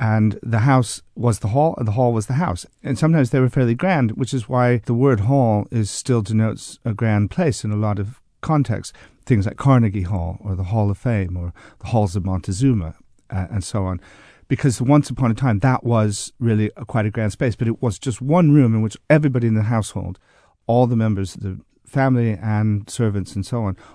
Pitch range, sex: 105-130 Hz, male